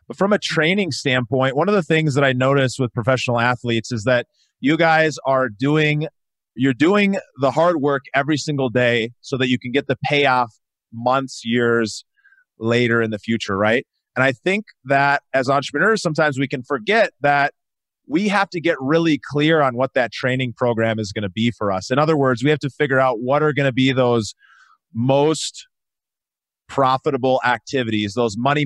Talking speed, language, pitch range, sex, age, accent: 190 wpm, English, 125-150 Hz, male, 30-49, American